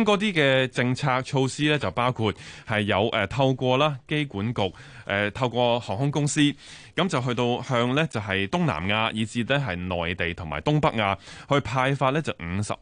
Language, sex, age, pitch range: Chinese, male, 20-39, 95-135 Hz